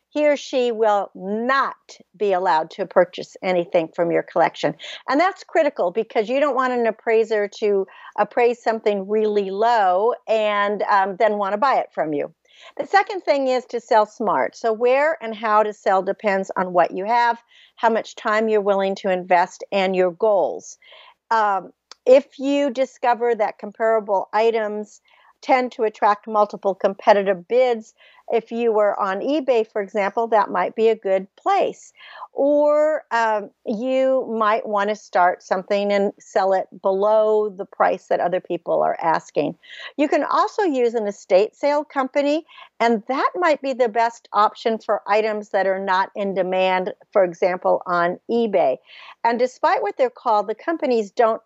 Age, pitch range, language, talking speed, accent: 50-69, 195-260 Hz, English, 165 wpm, American